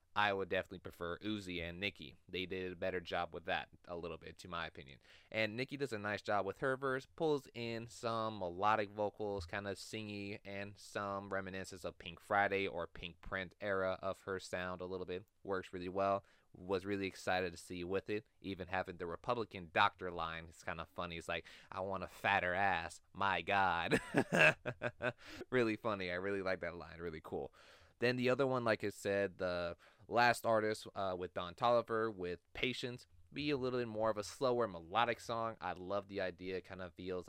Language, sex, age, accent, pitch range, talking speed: English, male, 20-39, American, 90-105 Hz, 200 wpm